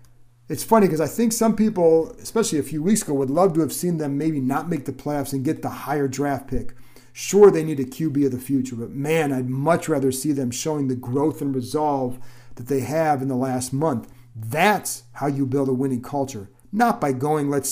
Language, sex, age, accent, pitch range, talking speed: English, male, 40-59, American, 130-155 Hz, 225 wpm